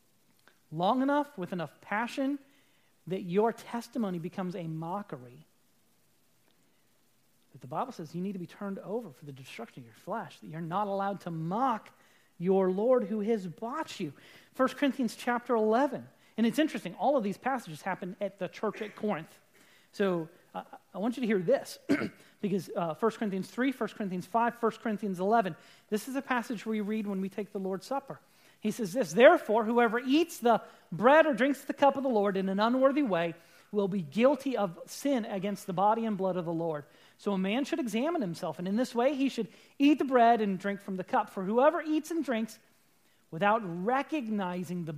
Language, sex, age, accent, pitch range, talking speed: English, male, 30-49, American, 190-255 Hz, 195 wpm